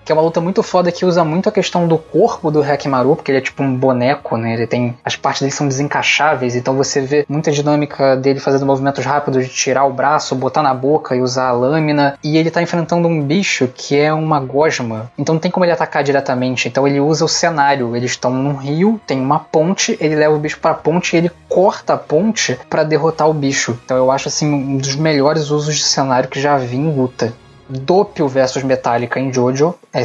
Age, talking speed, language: 20-39, 230 wpm, Portuguese